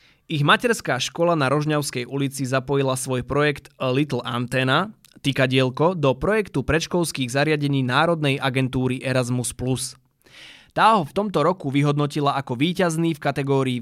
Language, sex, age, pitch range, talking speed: Slovak, male, 20-39, 125-155 Hz, 130 wpm